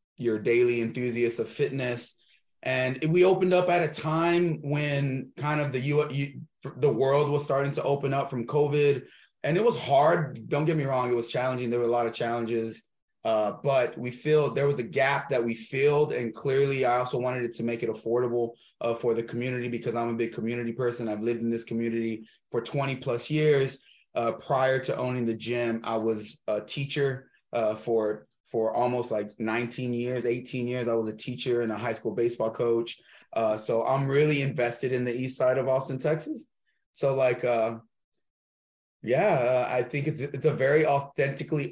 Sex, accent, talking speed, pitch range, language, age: male, American, 200 wpm, 120-145 Hz, English, 20-39